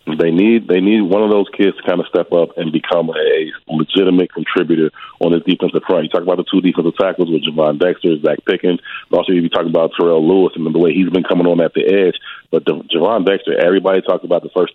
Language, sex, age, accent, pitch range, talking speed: English, male, 30-49, American, 85-95 Hz, 245 wpm